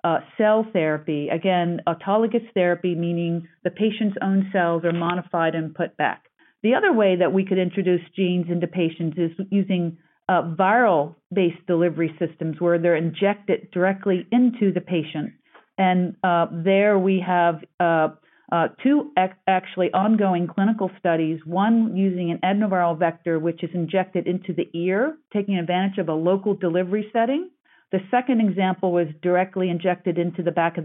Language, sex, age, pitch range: English, female, 40-59, 170-195 Hz